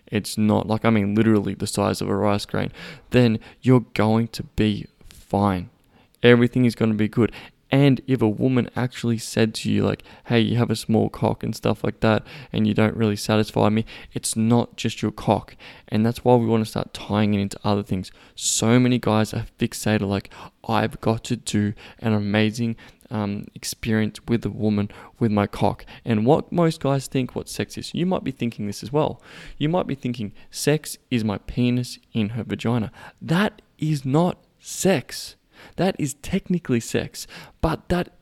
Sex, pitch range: male, 110-140 Hz